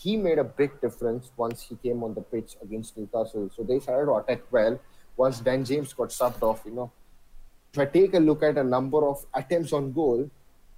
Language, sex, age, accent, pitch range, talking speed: English, male, 20-39, Indian, 120-150 Hz, 215 wpm